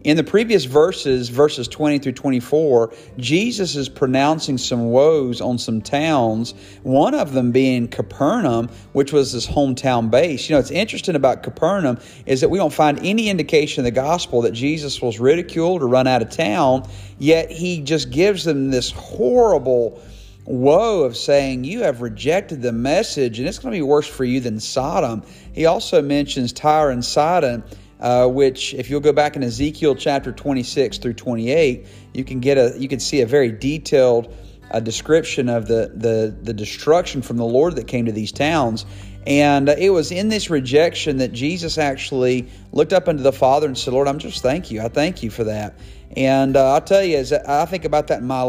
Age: 40-59